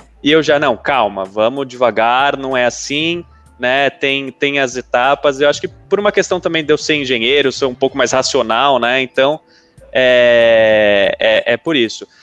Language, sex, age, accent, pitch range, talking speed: Portuguese, male, 20-39, Brazilian, 120-175 Hz, 185 wpm